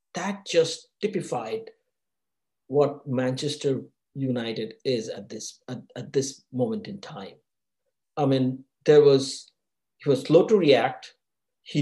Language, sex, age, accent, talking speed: English, male, 50-69, Indian, 125 wpm